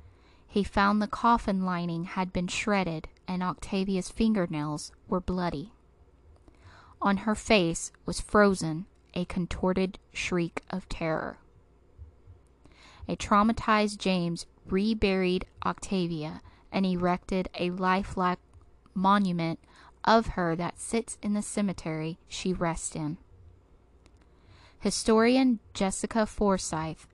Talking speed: 100 wpm